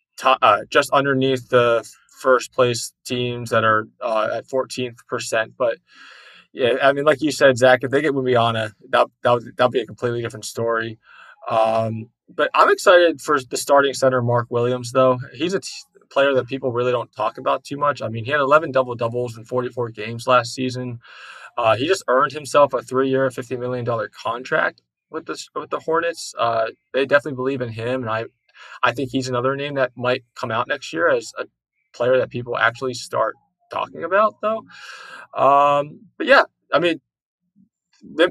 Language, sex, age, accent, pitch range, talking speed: English, male, 20-39, American, 115-140 Hz, 180 wpm